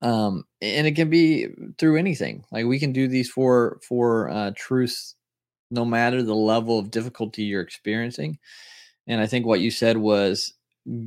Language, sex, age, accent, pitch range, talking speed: English, male, 20-39, American, 105-120 Hz, 170 wpm